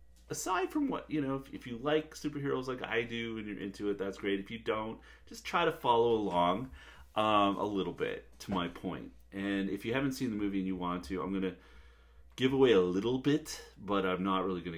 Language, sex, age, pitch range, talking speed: English, male, 30-49, 80-105 Hz, 235 wpm